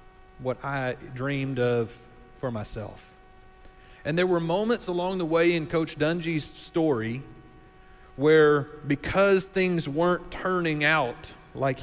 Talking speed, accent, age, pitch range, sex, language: 120 wpm, American, 40-59, 125-180 Hz, male, English